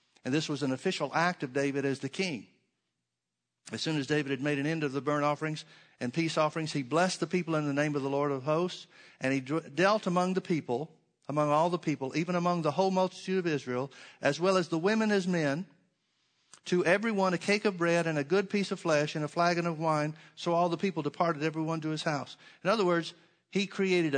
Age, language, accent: 50-69, English, American